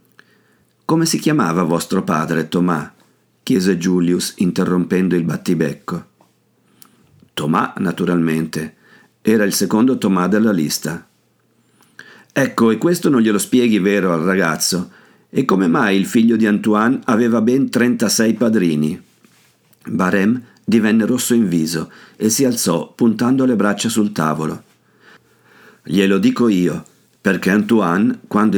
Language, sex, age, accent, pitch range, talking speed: Italian, male, 50-69, native, 85-115 Hz, 120 wpm